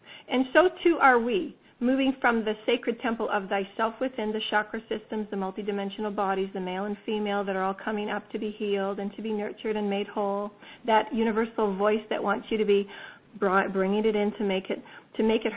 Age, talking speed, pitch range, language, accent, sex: 40-59, 205 wpm, 200-230 Hz, English, American, female